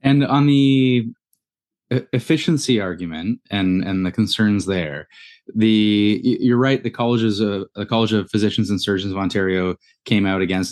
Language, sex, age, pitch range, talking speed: English, male, 20-39, 95-115 Hz, 150 wpm